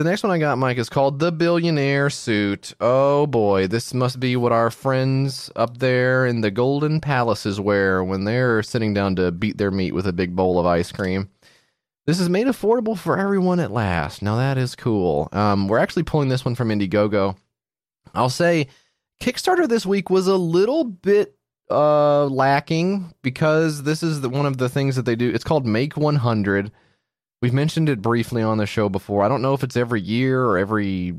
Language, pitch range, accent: English, 105-145 Hz, American